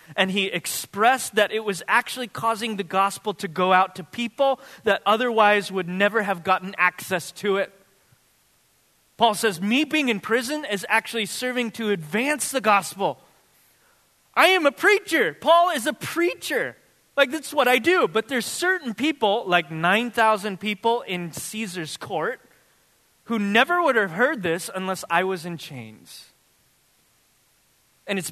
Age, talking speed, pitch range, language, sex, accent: 20-39, 155 wpm, 155-220 Hz, English, male, American